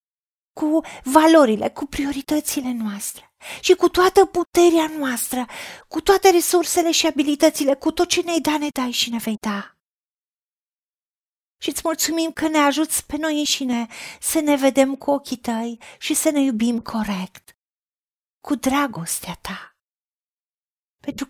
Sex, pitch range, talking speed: female, 225-310 Hz, 140 wpm